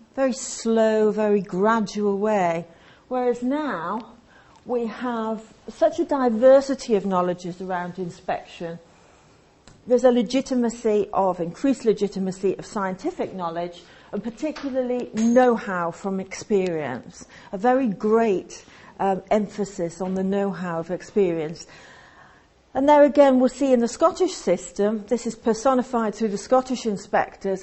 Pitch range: 185-230 Hz